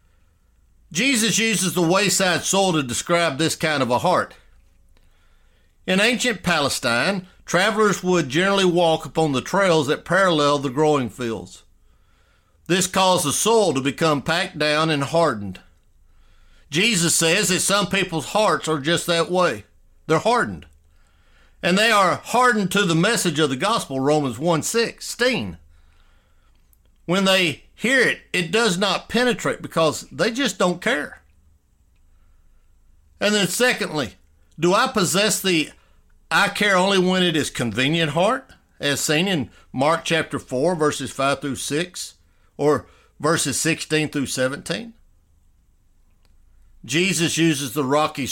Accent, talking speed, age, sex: American, 135 wpm, 60-79, male